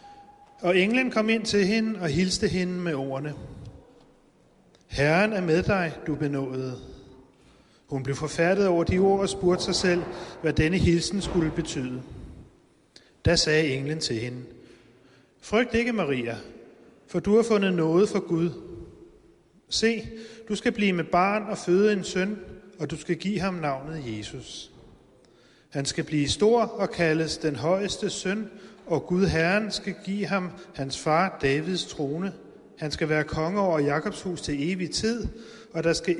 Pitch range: 135-195 Hz